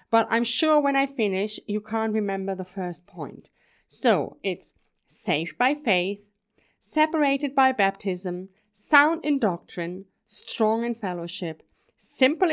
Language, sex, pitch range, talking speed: English, female, 185-255 Hz, 130 wpm